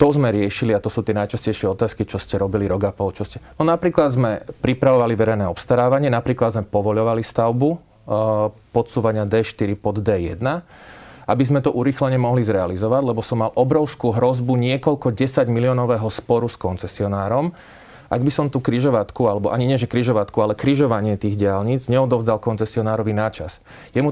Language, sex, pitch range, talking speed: Slovak, male, 110-130 Hz, 165 wpm